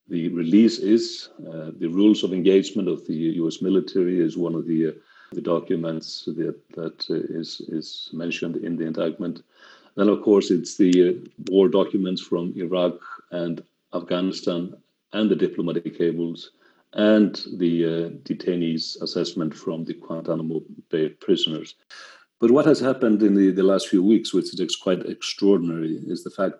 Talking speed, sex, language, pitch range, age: 155 wpm, male, English, 85-100 Hz, 50-69